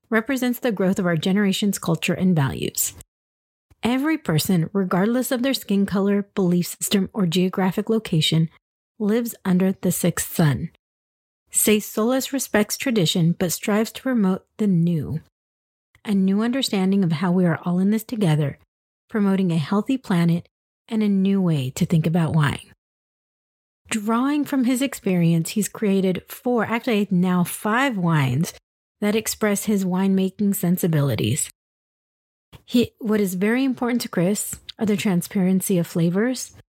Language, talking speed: English, 140 wpm